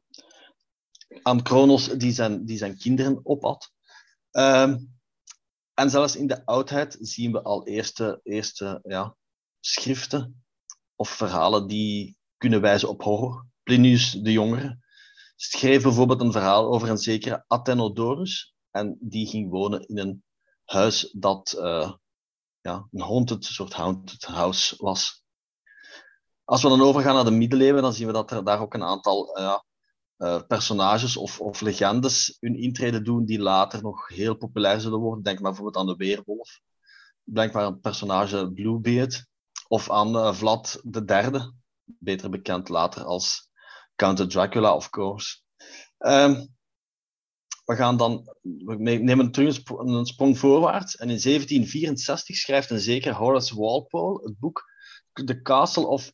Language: Dutch